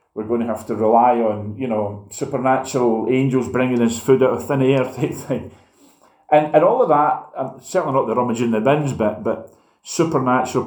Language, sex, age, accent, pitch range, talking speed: English, male, 40-59, British, 100-130 Hz, 190 wpm